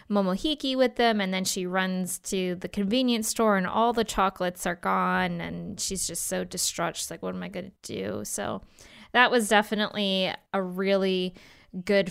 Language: English